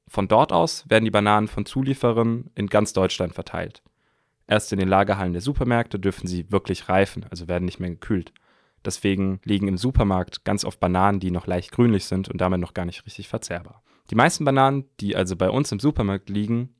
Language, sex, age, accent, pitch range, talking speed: English, male, 20-39, German, 95-120 Hz, 200 wpm